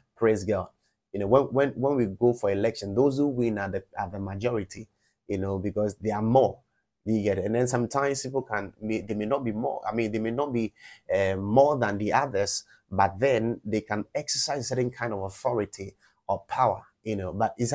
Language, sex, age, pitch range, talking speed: English, male, 30-49, 95-120 Hz, 215 wpm